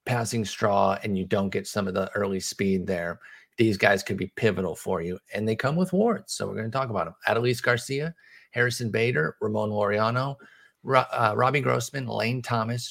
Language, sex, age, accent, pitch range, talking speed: English, male, 30-49, American, 105-140 Hz, 200 wpm